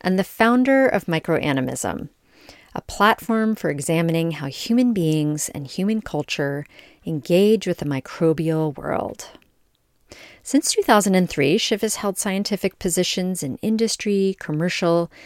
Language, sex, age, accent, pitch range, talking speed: English, female, 40-59, American, 155-195 Hz, 120 wpm